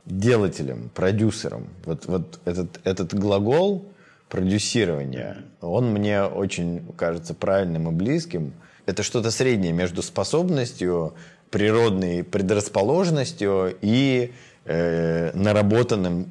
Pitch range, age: 90-120 Hz, 20-39